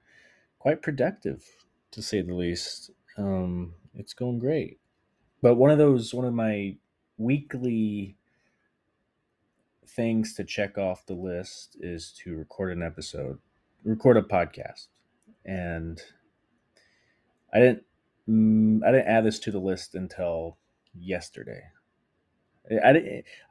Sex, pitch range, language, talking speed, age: male, 95-120 Hz, English, 125 wpm, 30-49